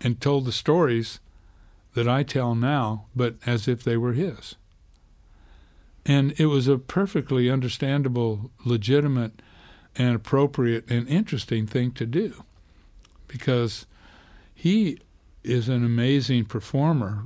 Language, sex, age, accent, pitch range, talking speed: English, male, 60-79, American, 110-135 Hz, 120 wpm